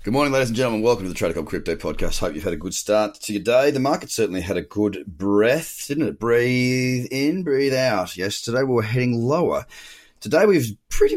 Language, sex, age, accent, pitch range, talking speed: English, male, 30-49, Australian, 100-135 Hz, 220 wpm